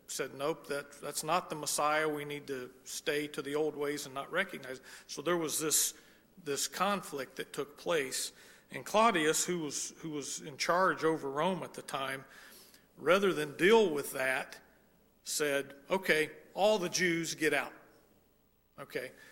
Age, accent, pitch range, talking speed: 40-59, American, 145-185 Hz, 170 wpm